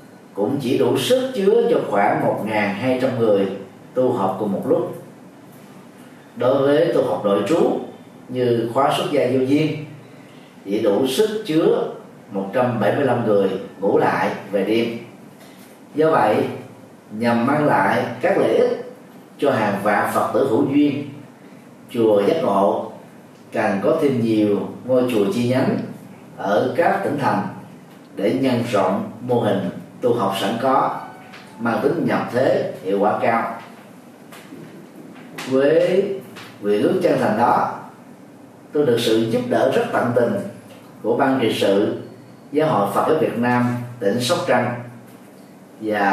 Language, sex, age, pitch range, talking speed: Vietnamese, male, 30-49, 110-140 Hz, 140 wpm